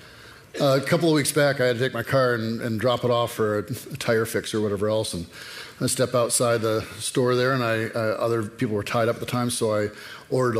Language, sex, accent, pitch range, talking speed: English, male, American, 110-135 Hz, 250 wpm